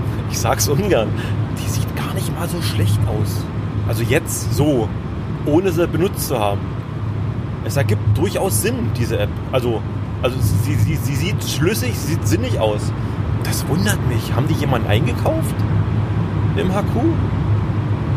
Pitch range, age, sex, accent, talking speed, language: 105-120 Hz, 30-49, male, German, 150 wpm, German